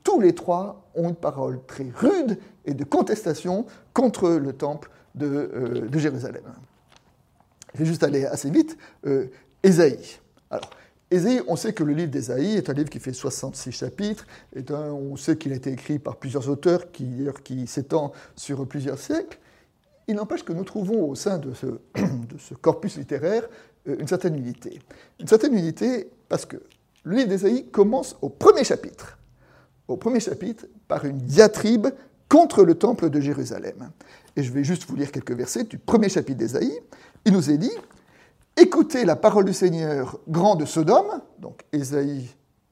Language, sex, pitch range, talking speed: French, male, 140-210 Hz, 175 wpm